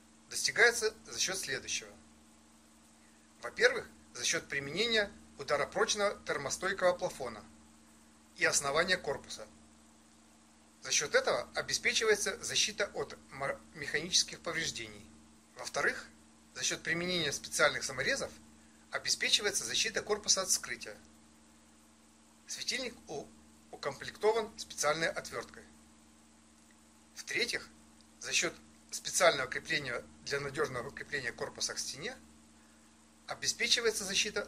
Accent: native